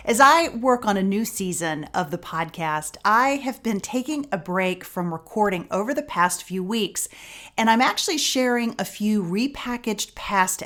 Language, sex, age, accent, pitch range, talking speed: English, female, 40-59, American, 190-270 Hz, 175 wpm